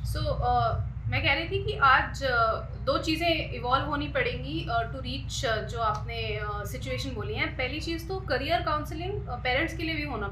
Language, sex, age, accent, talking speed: Hindi, female, 30-49, native, 200 wpm